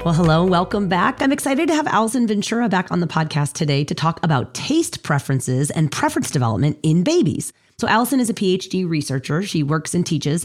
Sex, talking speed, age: female, 200 wpm, 30-49